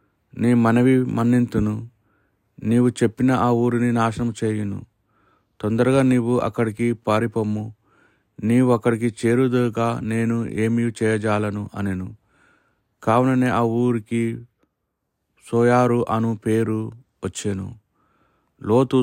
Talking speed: 90 wpm